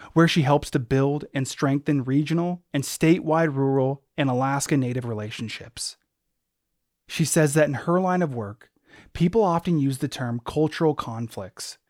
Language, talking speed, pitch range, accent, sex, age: English, 150 wpm, 120-160 Hz, American, male, 30-49